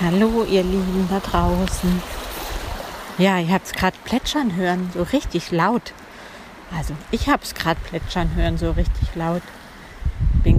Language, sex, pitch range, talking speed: German, female, 175-200 Hz, 140 wpm